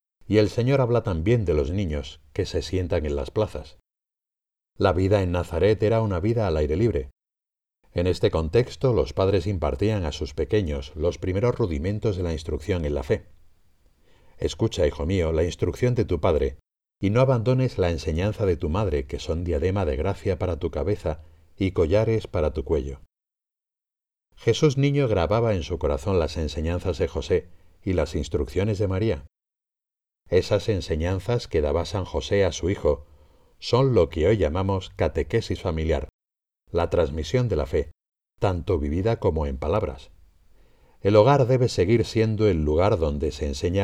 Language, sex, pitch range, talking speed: Spanish, male, 80-110 Hz, 165 wpm